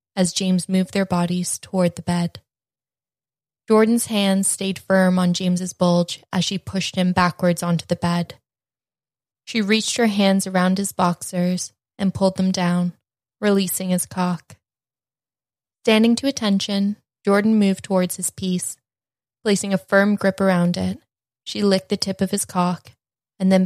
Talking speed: 150 wpm